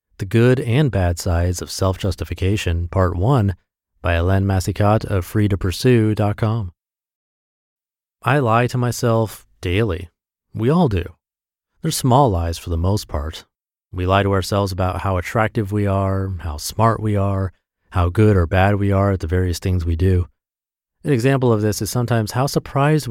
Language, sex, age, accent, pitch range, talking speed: English, male, 30-49, American, 95-135 Hz, 160 wpm